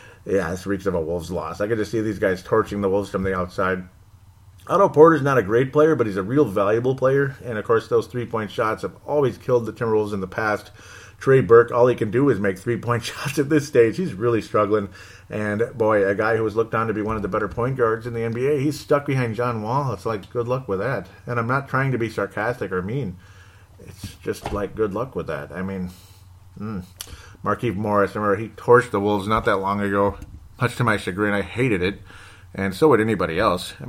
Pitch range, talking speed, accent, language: 95-120 Hz, 235 wpm, American, English